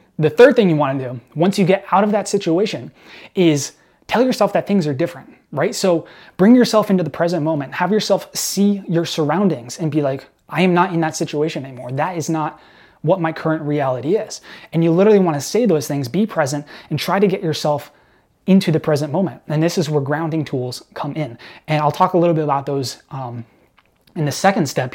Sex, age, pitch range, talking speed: male, 20-39, 145-185 Hz, 220 wpm